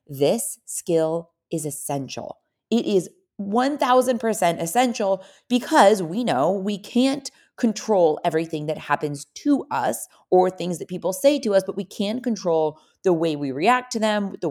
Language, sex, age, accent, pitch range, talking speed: English, female, 30-49, American, 165-215 Hz, 155 wpm